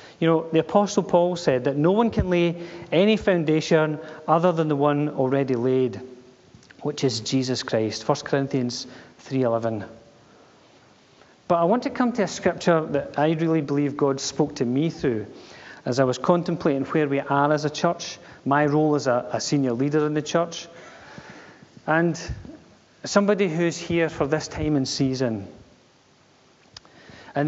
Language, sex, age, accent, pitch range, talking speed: English, male, 40-59, British, 135-175 Hz, 160 wpm